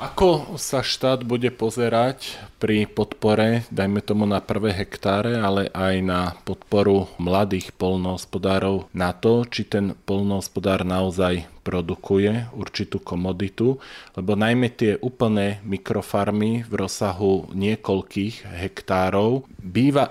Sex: male